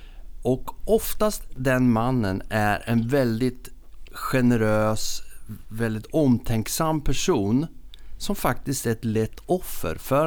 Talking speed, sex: 105 wpm, male